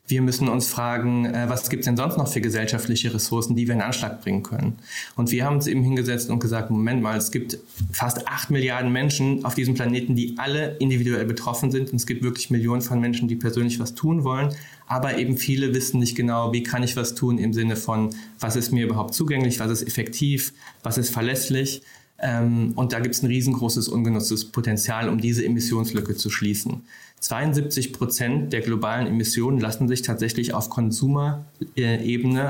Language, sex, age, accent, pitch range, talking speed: German, male, 20-39, German, 115-130 Hz, 190 wpm